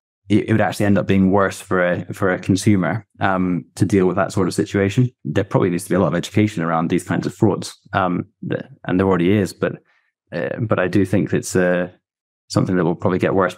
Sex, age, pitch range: male, 20-39, 95-110 Hz